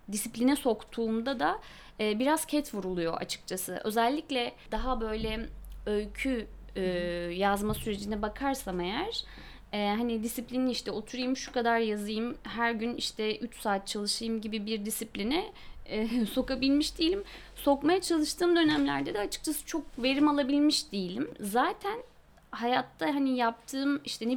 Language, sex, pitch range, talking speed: Turkish, female, 215-275 Hz, 120 wpm